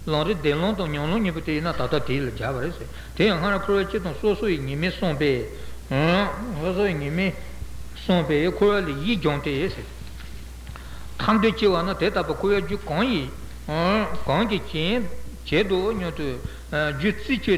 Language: Italian